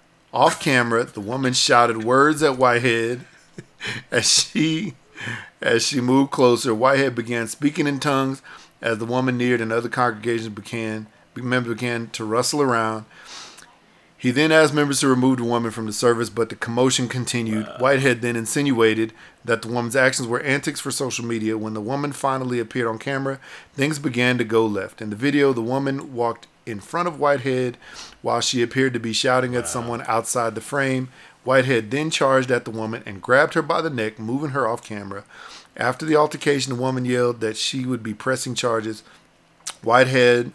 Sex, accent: male, American